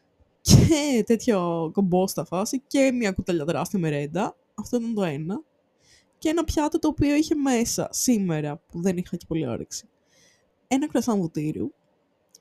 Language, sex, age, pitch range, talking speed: Greek, female, 20-39, 185-255 Hz, 150 wpm